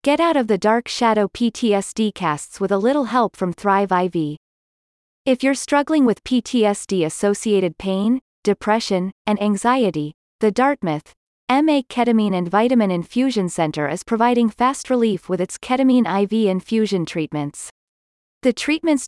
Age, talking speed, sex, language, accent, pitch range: 30-49, 140 wpm, female, English, American, 180-245 Hz